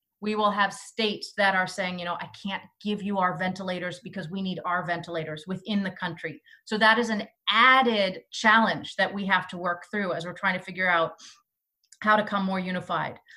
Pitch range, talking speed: 185-225 Hz, 205 wpm